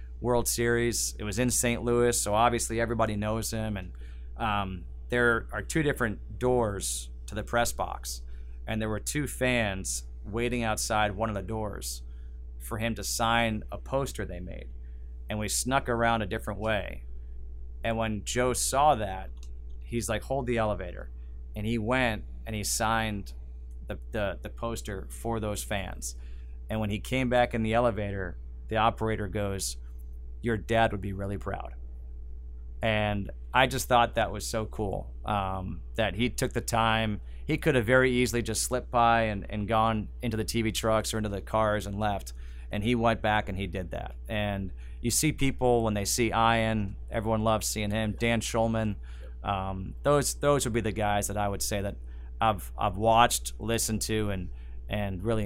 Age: 30-49